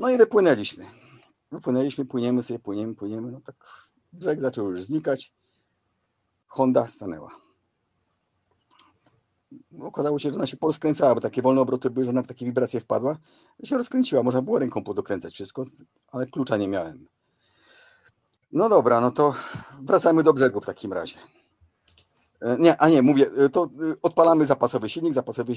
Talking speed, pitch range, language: 155 wpm, 125-165 Hz, Polish